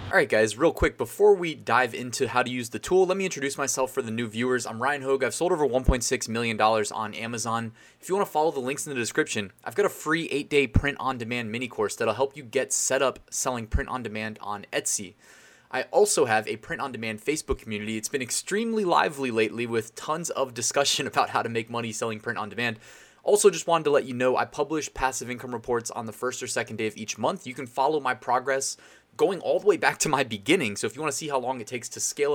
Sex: male